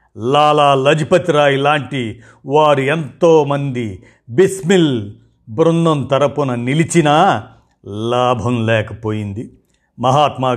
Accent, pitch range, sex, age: native, 110-140 Hz, male, 50-69